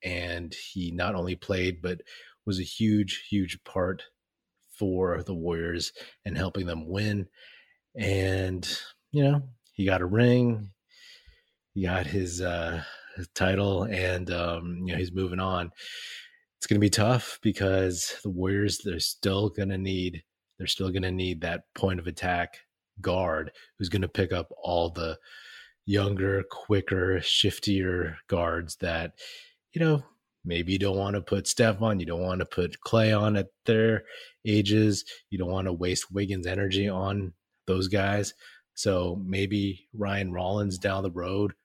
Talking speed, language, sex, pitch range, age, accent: 155 wpm, English, male, 90-105 Hz, 30-49, American